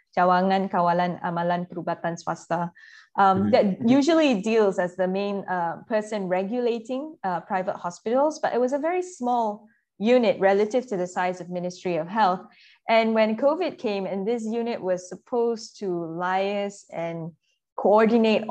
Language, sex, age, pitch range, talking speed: English, female, 20-39, 180-215 Hz, 145 wpm